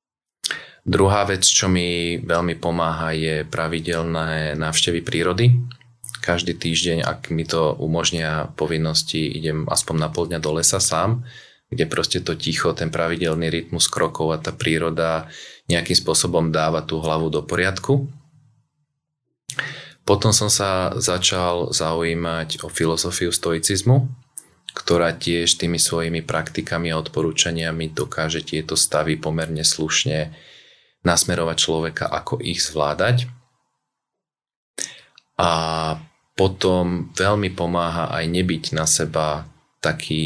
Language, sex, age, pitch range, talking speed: Slovak, male, 30-49, 80-90 Hz, 115 wpm